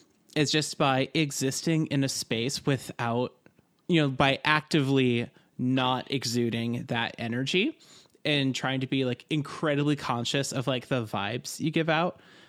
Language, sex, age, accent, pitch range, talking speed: English, male, 20-39, American, 125-155 Hz, 145 wpm